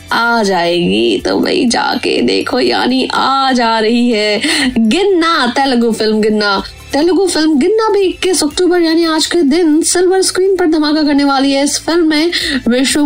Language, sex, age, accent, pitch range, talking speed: Hindi, female, 20-39, native, 235-330 Hz, 160 wpm